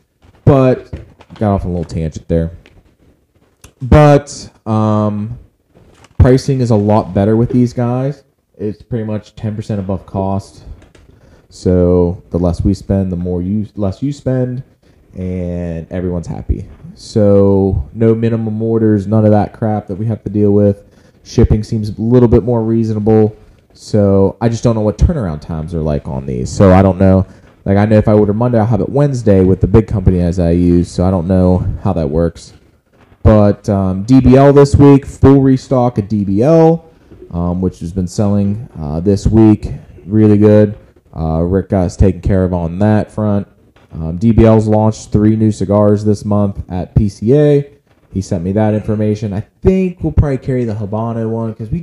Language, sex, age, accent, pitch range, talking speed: English, male, 20-39, American, 95-115 Hz, 180 wpm